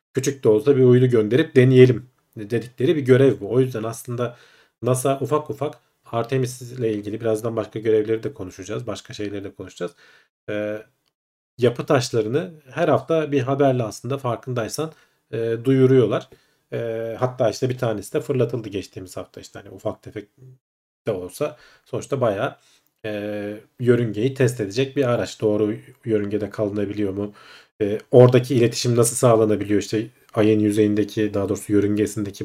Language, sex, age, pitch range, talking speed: Turkish, male, 40-59, 105-130 Hz, 140 wpm